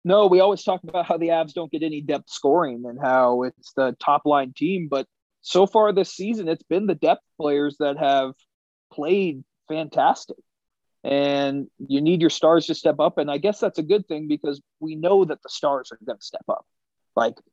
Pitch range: 135-165 Hz